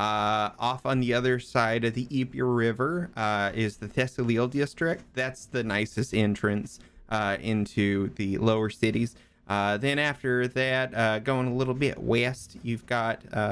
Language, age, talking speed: English, 30-49, 160 wpm